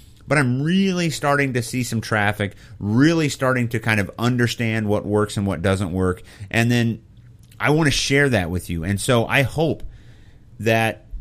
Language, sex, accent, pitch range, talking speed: English, male, American, 95-120 Hz, 180 wpm